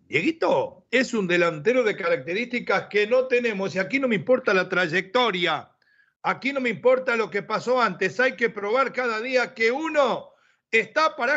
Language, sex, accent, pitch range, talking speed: Spanish, male, Argentinian, 200-260 Hz, 175 wpm